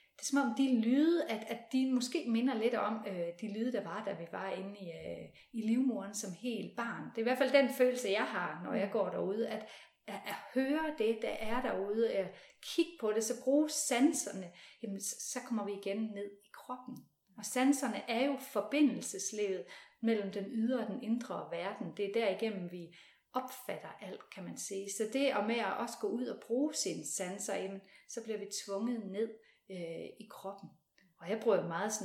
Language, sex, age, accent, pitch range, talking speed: Danish, female, 30-49, native, 200-255 Hz, 205 wpm